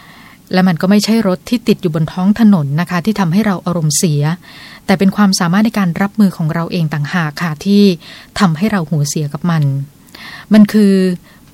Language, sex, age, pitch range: Thai, female, 20-39, 165-205 Hz